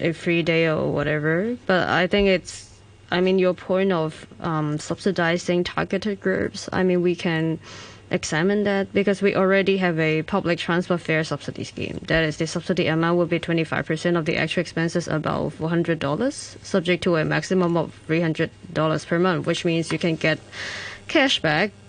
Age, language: 20-39, English